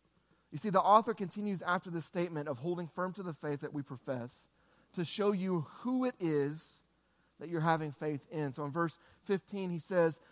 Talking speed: 200 wpm